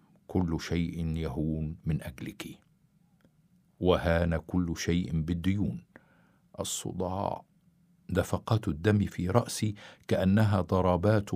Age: 50-69